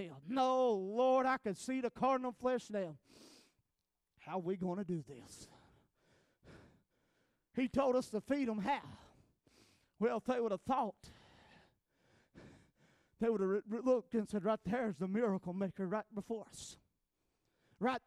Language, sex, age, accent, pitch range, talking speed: English, male, 40-59, American, 205-260 Hz, 155 wpm